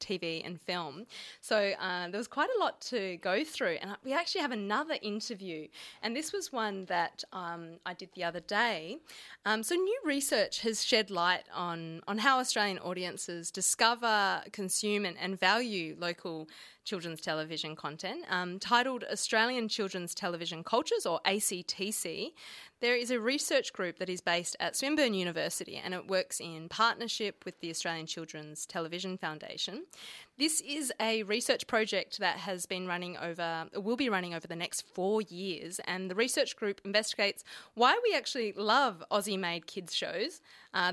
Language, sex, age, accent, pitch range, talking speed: English, female, 20-39, Australian, 175-230 Hz, 165 wpm